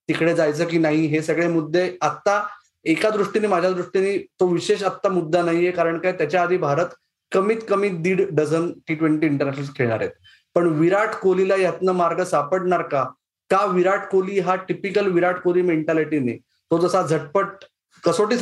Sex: male